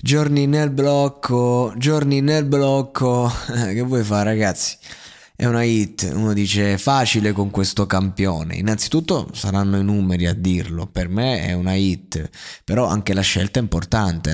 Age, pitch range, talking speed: 20-39, 95-120 Hz, 150 wpm